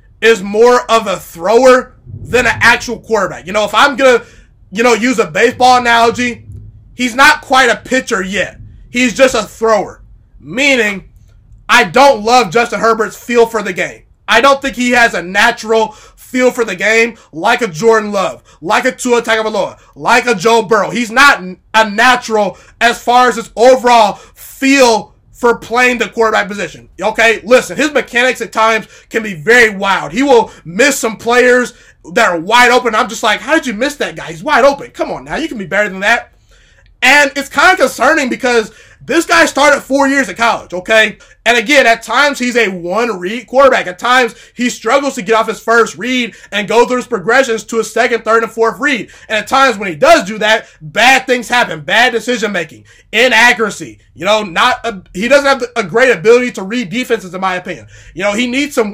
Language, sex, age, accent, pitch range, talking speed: English, male, 20-39, American, 215-250 Hz, 200 wpm